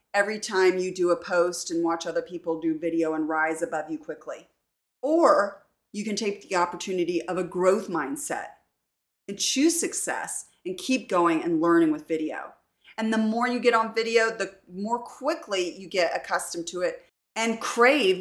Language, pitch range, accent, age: English, 170-225 Hz, American, 30-49